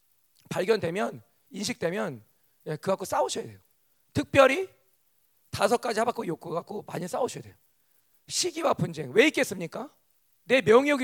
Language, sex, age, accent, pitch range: Korean, male, 40-59, native, 155-230 Hz